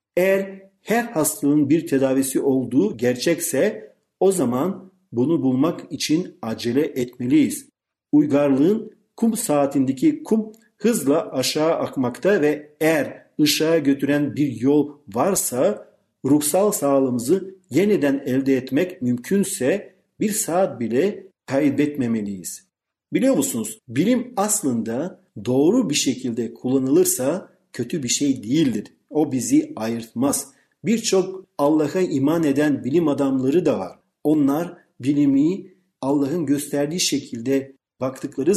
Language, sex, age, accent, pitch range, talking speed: Turkish, male, 50-69, native, 135-195 Hz, 105 wpm